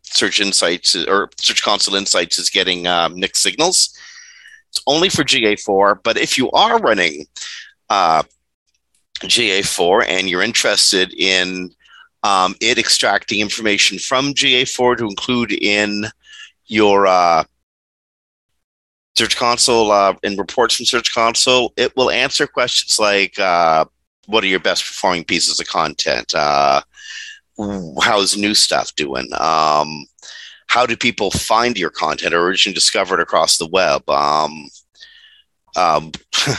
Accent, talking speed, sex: American, 130 wpm, male